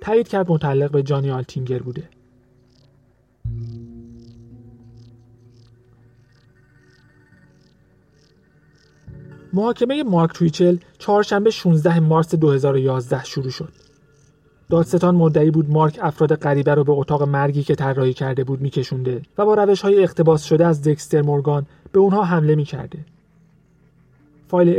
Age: 30-49